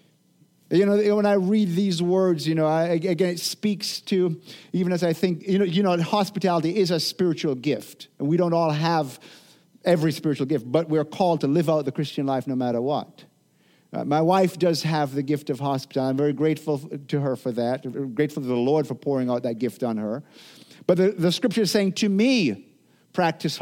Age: 50-69